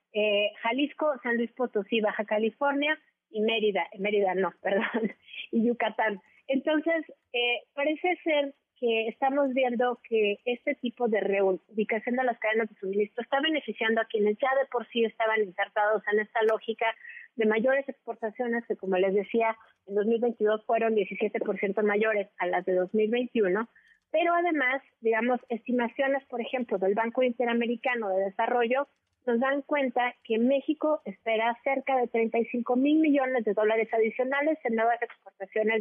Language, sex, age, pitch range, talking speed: Spanish, female, 30-49, 215-255 Hz, 145 wpm